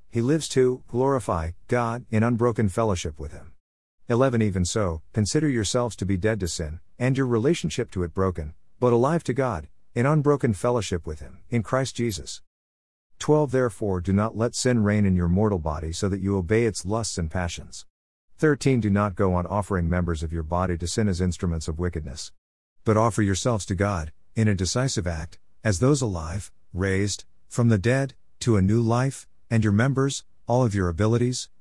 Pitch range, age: 90-120 Hz, 50-69